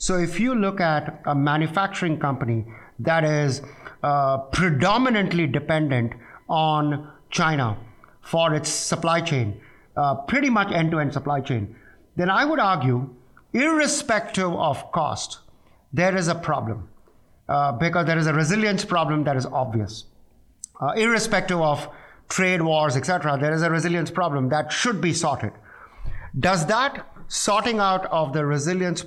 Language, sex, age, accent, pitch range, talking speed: English, male, 50-69, Indian, 150-190 Hz, 140 wpm